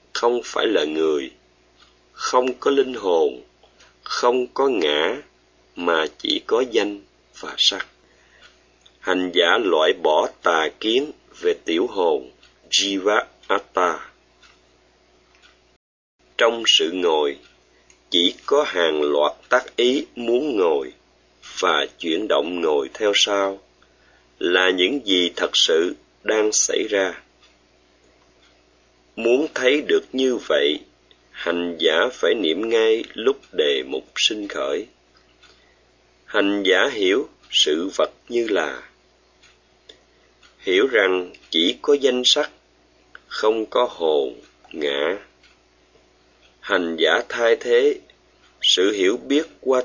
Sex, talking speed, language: male, 110 wpm, Vietnamese